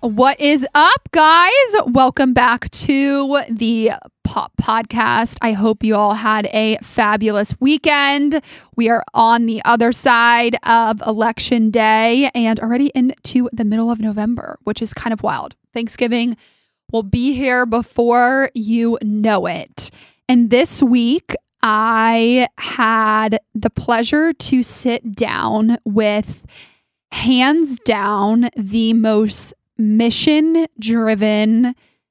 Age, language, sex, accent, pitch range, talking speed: 20-39, English, female, American, 220-255 Hz, 120 wpm